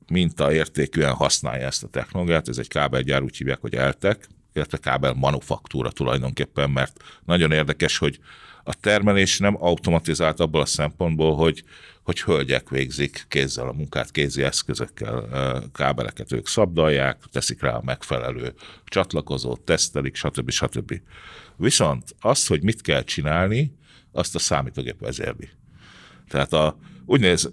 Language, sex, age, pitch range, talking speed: Hungarian, male, 60-79, 70-100 Hz, 120 wpm